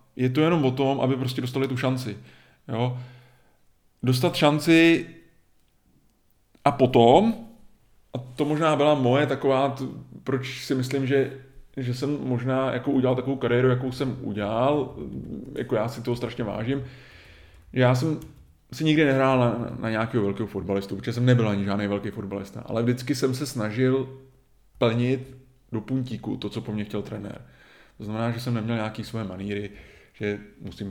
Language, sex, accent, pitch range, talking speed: Czech, male, native, 120-140 Hz, 160 wpm